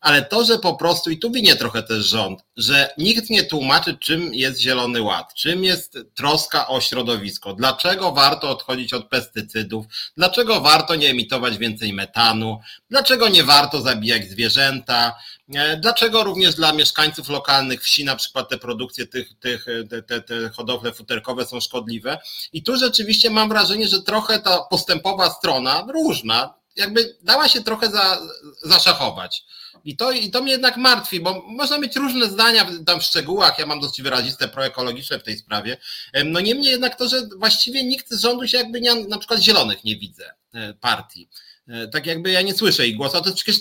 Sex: male